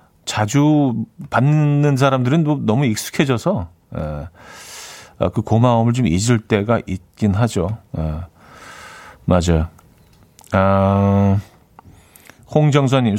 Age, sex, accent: 40-59, male, native